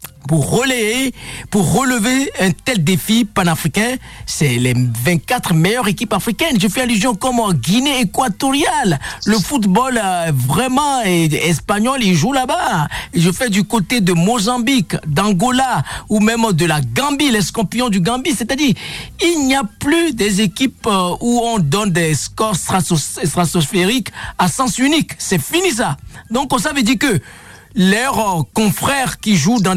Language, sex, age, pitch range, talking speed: French, male, 50-69, 175-245 Hz, 150 wpm